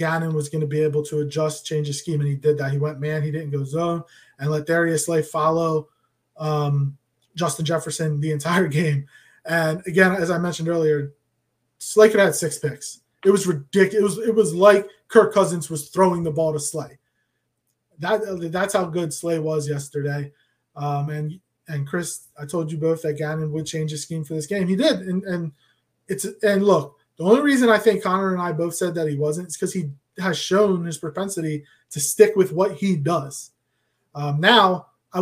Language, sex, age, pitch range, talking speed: English, male, 20-39, 155-190 Hz, 205 wpm